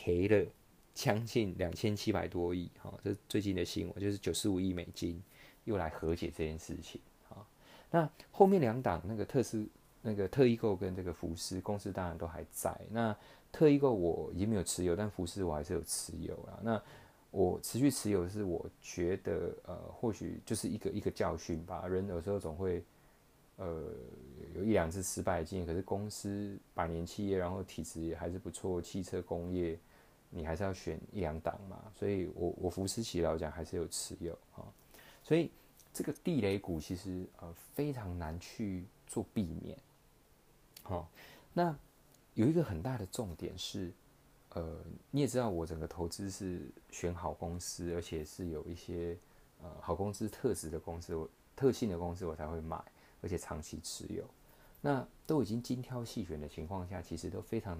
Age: 20-39